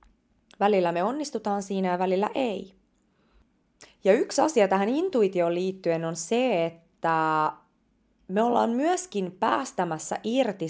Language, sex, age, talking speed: Finnish, female, 20-39, 120 wpm